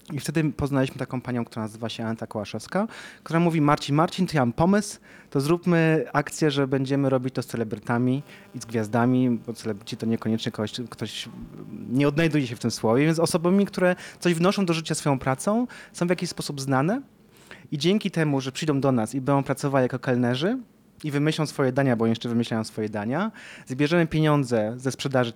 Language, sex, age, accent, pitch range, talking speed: Polish, male, 30-49, native, 125-165 Hz, 190 wpm